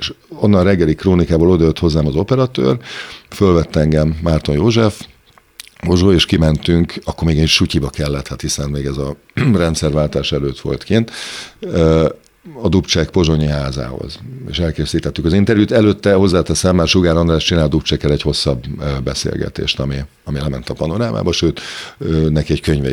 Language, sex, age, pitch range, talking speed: Hungarian, male, 50-69, 75-95 Hz, 145 wpm